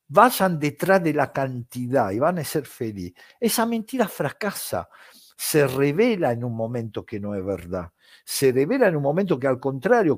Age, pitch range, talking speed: 60-79, 115-175 Hz, 175 wpm